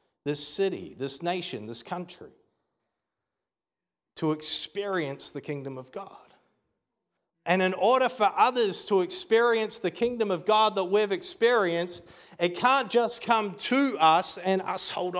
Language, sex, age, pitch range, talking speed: Danish, male, 40-59, 175-215 Hz, 140 wpm